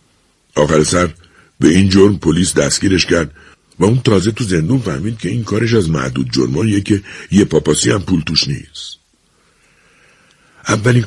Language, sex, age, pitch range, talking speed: Persian, male, 60-79, 75-105 Hz, 150 wpm